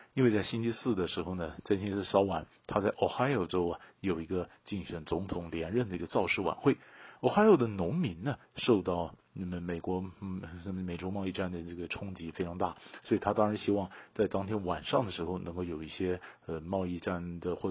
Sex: male